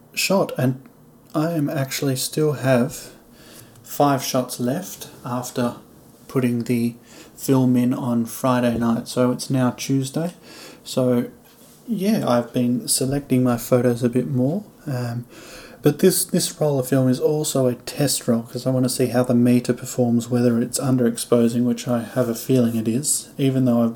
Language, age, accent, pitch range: English, 30-49, Australian, 120-135 Hz